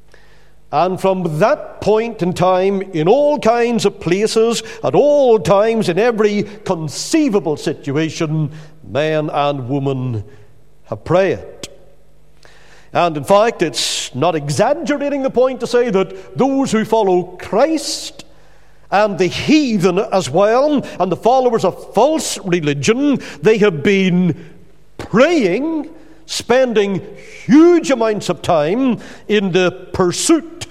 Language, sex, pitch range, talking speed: English, male, 160-225 Hz, 120 wpm